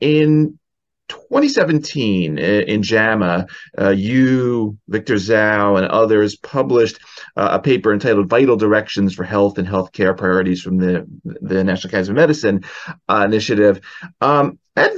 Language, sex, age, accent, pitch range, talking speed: English, male, 30-49, American, 100-120 Hz, 130 wpm